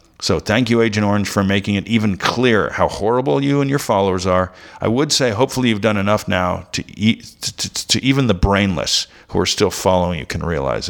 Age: 50-69